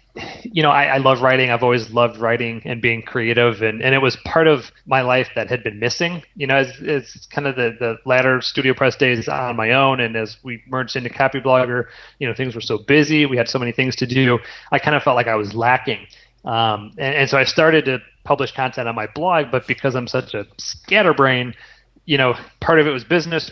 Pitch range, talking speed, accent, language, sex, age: 120-140 Hz, 235 wpm, American, English, male, 30-49